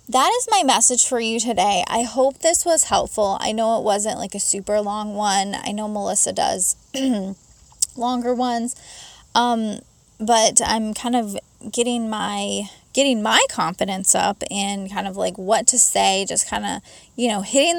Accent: American